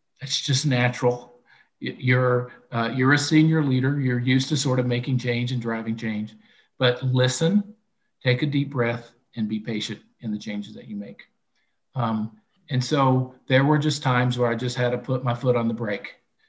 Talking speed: 190 wpm